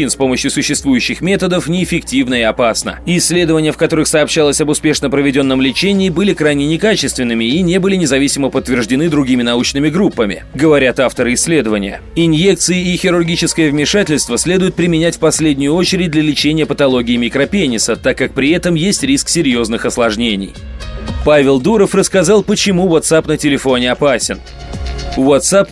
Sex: male